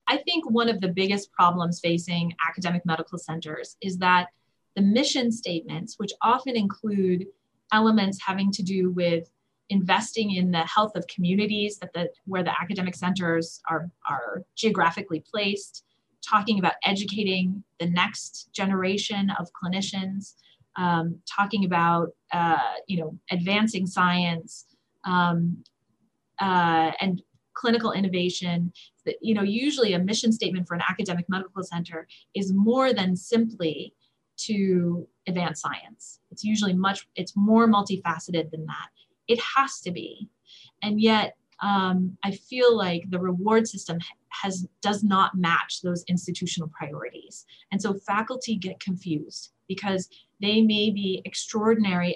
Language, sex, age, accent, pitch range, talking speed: English, female, 30-49, American, 175-205 Hz, 135 wpm